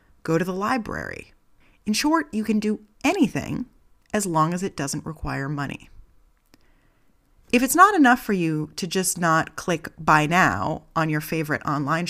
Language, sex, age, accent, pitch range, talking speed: English, female, 30-49, American, 155-215 Hz, 165 wpm